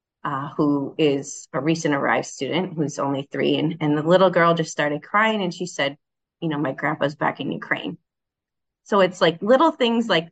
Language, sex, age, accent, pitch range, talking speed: English, female, 30-49, American, 150-180 Hz, 200 wpm